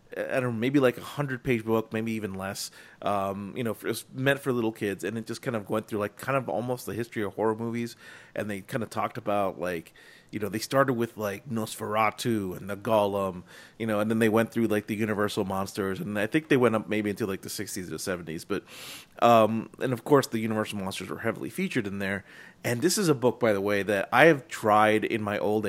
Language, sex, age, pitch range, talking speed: English, male, 30-49, 105-125 Hz, 245 wpm